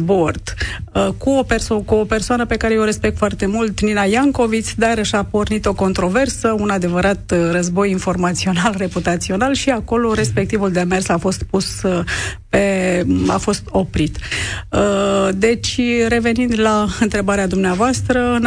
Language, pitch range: Romanian, 180-225 Hz